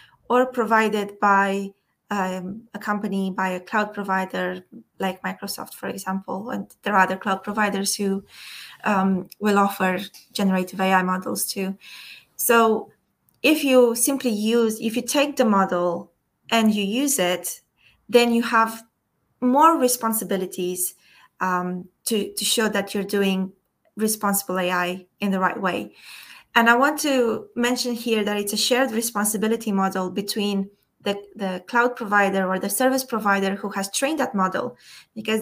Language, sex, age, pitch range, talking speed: Romanian, female, 20-39, 190-225 Hz, 145 wpm